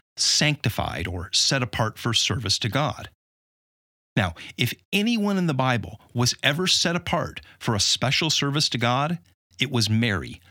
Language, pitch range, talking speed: English, 100-130 Hz, 155 wpm